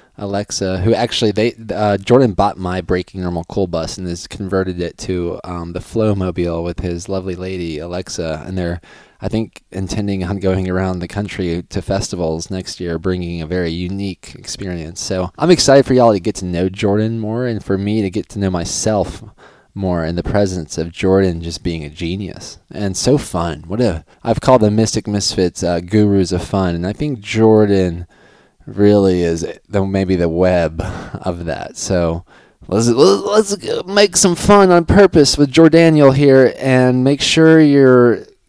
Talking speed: 180 wpm